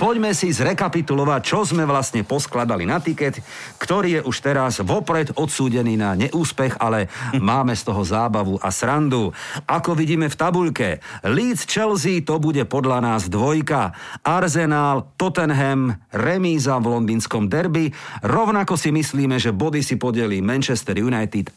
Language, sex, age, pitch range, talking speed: Slovak, male, 50-69, 110-160 Hz, 140 wpm